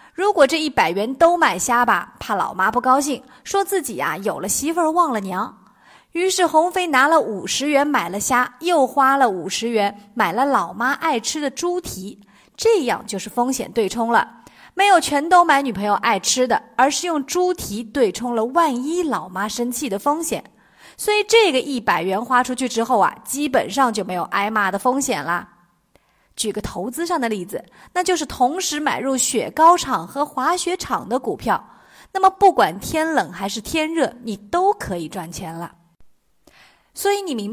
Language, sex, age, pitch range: Chinese, female, 30-49, 220-330 Hz